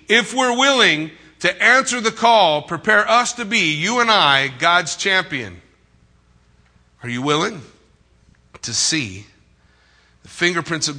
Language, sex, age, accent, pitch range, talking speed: English, male, 50-69, American, 105-160 Hz, 130 wpm